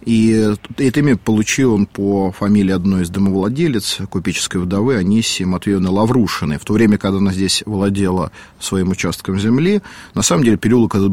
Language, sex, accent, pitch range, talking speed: Russian, male, native, 95-120 Hz, 160 wpm